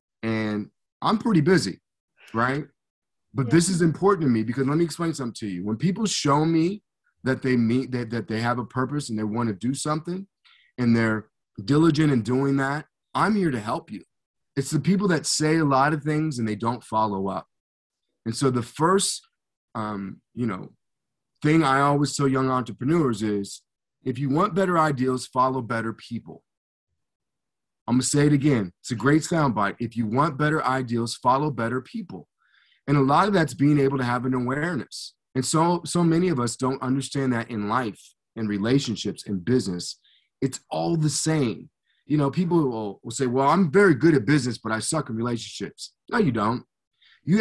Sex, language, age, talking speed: male, English, 30-49, 195 wpm